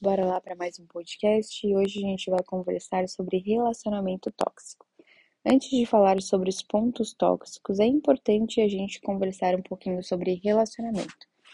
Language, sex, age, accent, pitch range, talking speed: Portuguese, female, 10-29, Brazilian, 185-215 Hz, 160 wpm